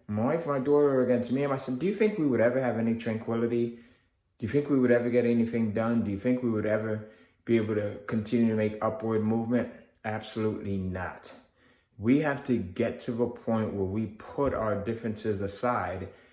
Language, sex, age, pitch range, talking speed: English, male, 20-39, 95-120 Hz, 210 wpm